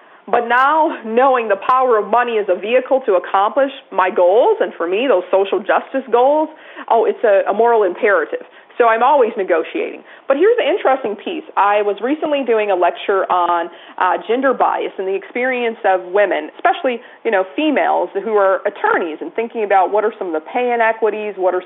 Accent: American